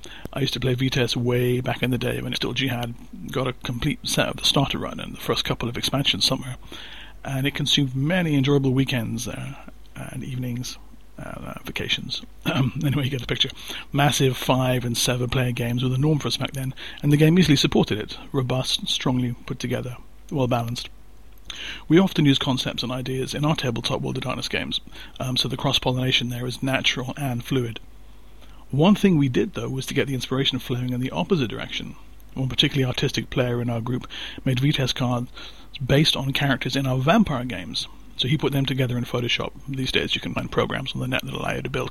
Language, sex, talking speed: English, male, 210 wpm